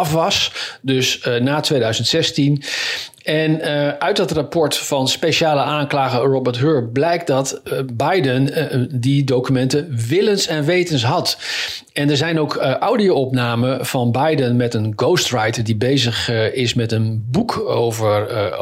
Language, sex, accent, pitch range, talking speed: Dutch, male, Dutch, 125-150 Hz, 145 wpm